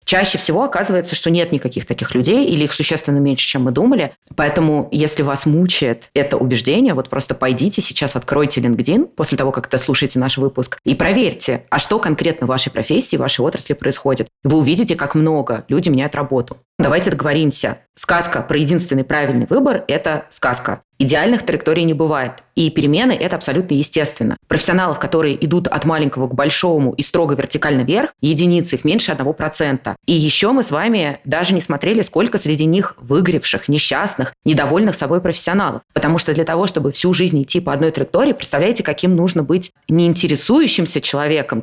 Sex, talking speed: female, 175 wpm